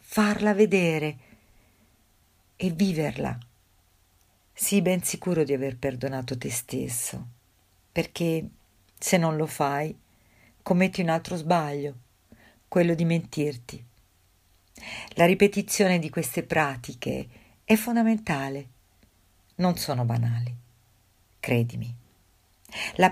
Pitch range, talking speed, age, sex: 115-175 Hz, 95 wpm, 50-69, female